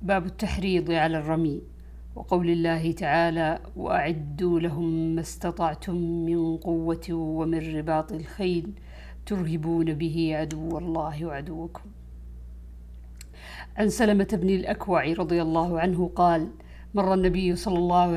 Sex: female